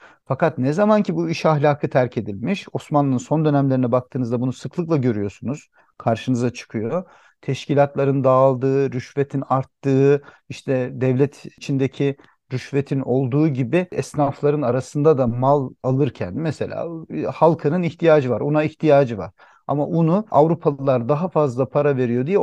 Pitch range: 130-155 Hz